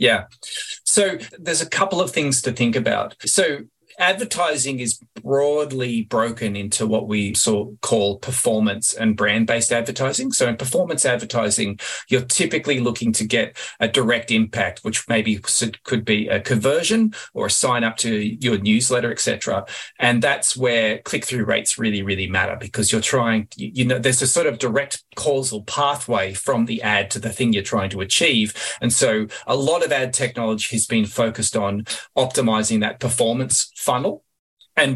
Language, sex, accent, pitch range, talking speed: English, male, Australian, 105-130 Hz, 165 wpm